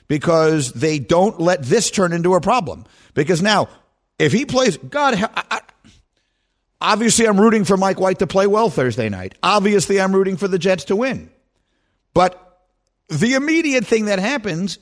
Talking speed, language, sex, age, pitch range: 160 wpm, English, male, 50-69, 150-225 Hz